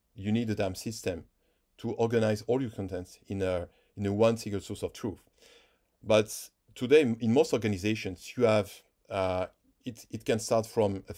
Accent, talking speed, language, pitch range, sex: French, 175 wpm, English, 100-115 Hz, male